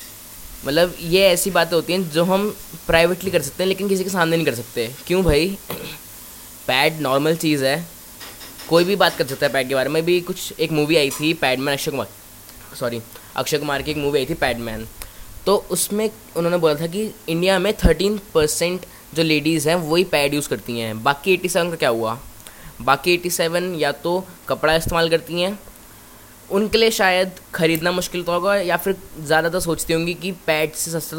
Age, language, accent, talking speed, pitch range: 10-29, Hindi, native, 190 wpm, 145-180 Hz